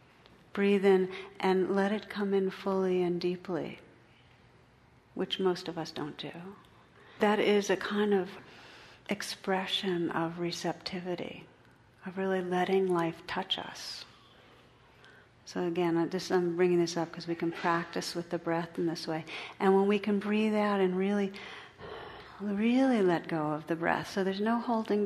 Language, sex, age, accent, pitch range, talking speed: English, female, 50-69, American, 165-195 Hz, 160 wpm